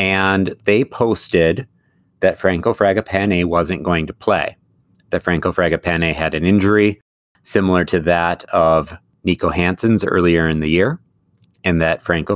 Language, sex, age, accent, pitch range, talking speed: English, male, 30-49, American, 90-115 Hz, 140 wpm